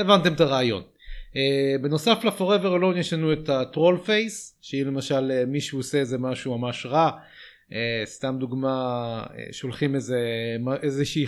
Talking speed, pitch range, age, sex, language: 145 wpm, 120-145 Hz, 30-49, male, Hebrew